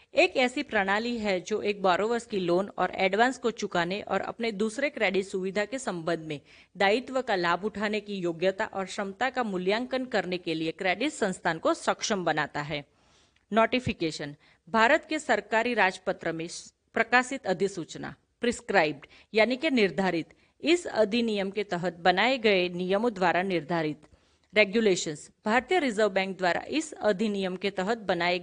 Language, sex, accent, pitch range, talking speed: Hindi, female, native, 180-230 Hz, 150 wpm